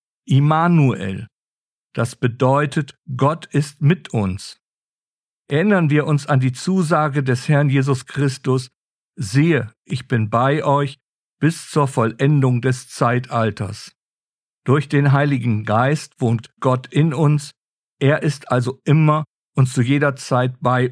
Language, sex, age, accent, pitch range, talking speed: German, male, 50-69, German, 125-150 Hz, 125 wpm